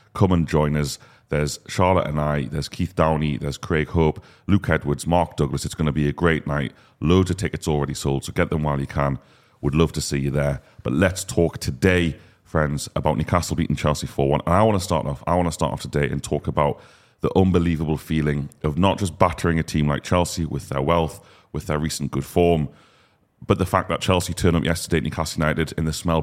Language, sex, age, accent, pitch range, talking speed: English, male, 30-49, British, 75-90 Hz, 225 wpm